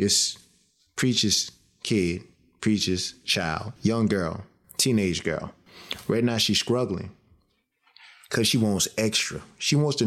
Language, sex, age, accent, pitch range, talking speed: English, male, 20-39, American, 95-115 Hz, 120 wpm